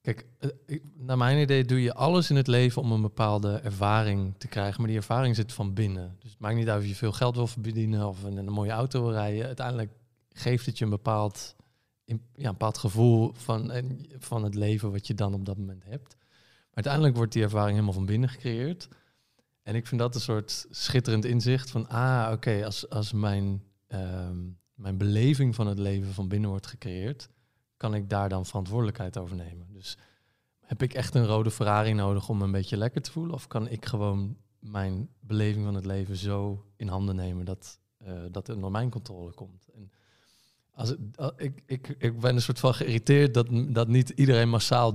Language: Dutch